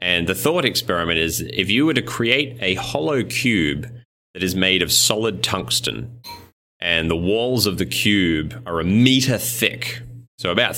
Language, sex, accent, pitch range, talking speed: English, male, Australian, 90-120 Hz, 175 wpm